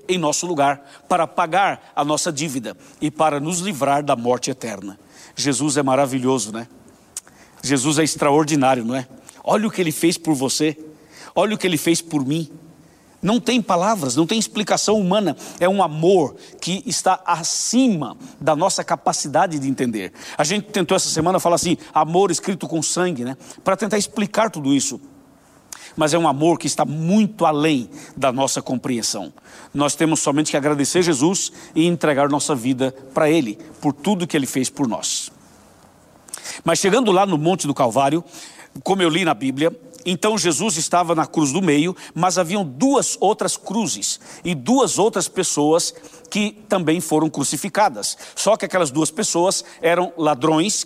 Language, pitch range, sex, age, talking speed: Portuguese, 150-185 Hz, male, 60-79, 170 wpm